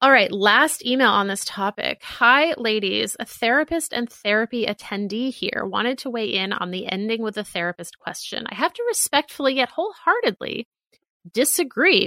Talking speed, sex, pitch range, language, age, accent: 165 wpm, female, 190-245 Hz, English, 30-49, American